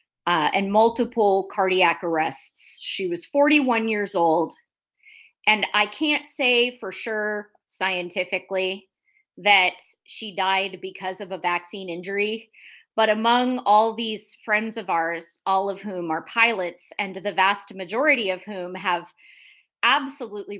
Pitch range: 190-235 Hz